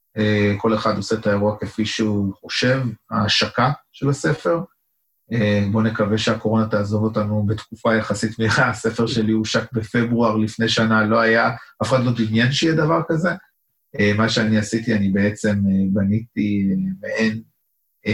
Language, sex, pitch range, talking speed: Hebrew, male, 105-115 Hz, 135 wpm